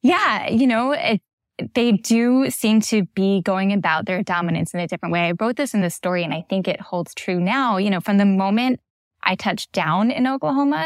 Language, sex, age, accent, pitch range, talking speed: English, female, 10-29, American, 180-225 Hz, 215 wpm